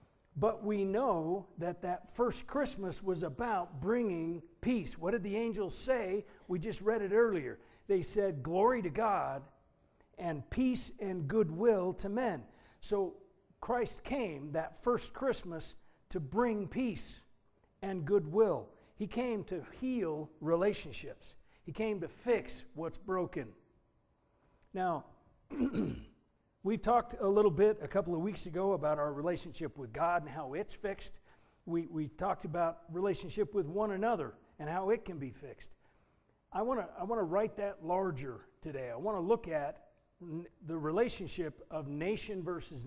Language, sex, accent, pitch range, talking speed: English, male, American, 160-210 Hz, 150 wpm